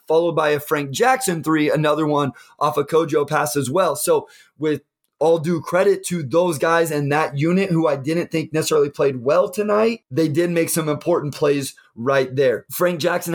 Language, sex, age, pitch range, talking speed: English, male, 20-39, 145-175 Hz, 195 wpm